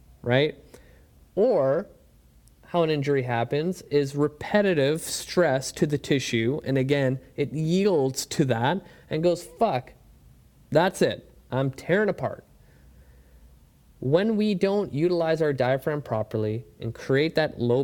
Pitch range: 115-165 Hz